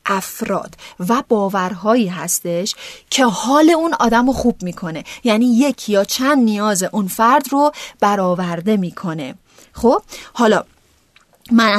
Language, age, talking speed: Persian, 30-49, 115 wpm